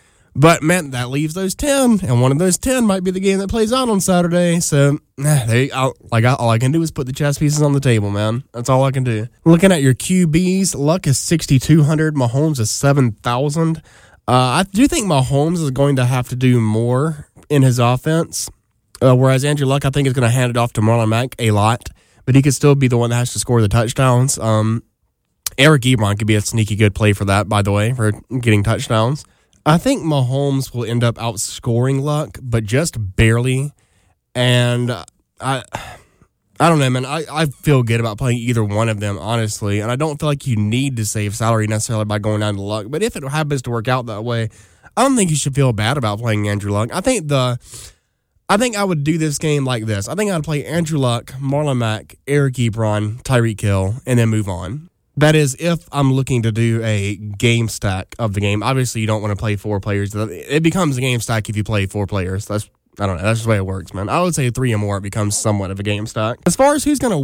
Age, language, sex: 20-39, English, male